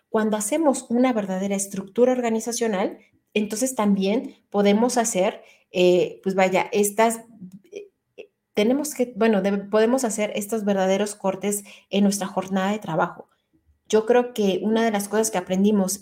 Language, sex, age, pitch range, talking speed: Spanish, female, 30-49, 190-225 Hz, 140 wpm